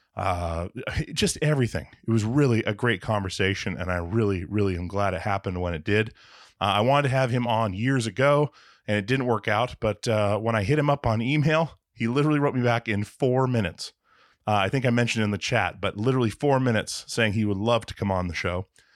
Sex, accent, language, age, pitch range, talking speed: male, American, English, 30-49, 100-125 Hz, 230 wpm